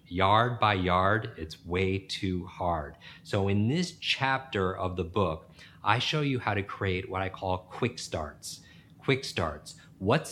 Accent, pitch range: American, 95-125 Hz